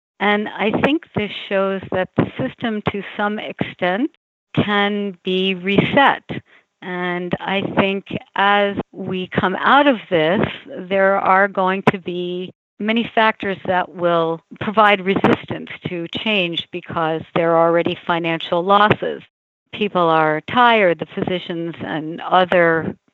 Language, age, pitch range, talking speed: English, 50-69, 175-205 Hz, 125 wpm